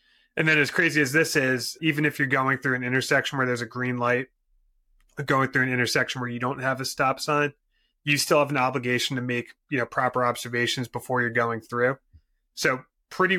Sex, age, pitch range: male, 30-49, 115-135 Hz